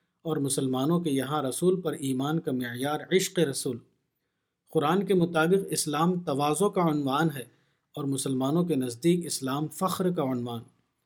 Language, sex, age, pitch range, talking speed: Urdu, male, 50-69, 140-175 Hz, 145 wpm